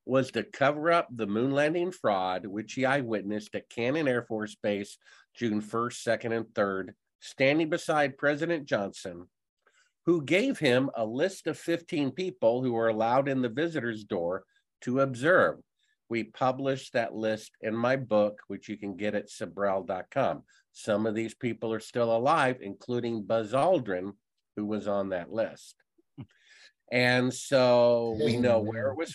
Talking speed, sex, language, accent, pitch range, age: 160 wpm, male, English, American, 115-165 Hz, 50-69